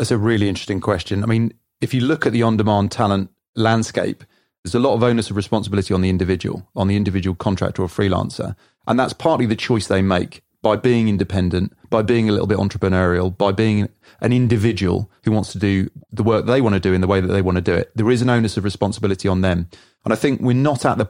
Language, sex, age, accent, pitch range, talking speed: English, male, 30-49, British, 95-115 Hz, 240 wpm